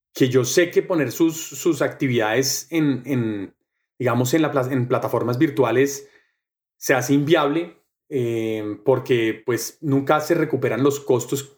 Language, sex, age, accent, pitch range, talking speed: Spanish, male, 30-49, Colombian, 135-180 Hz, 140 wpm